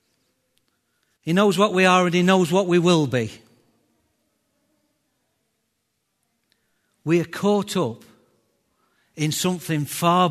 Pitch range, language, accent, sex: 130-180 Hz, English, British, male